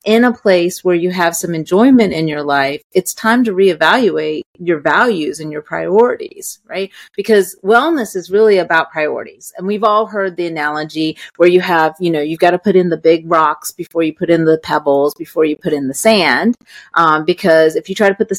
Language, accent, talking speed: English, American, 215 wpm